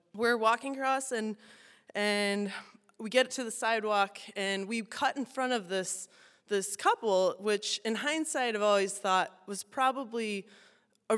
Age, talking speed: 20-39, 150 wpm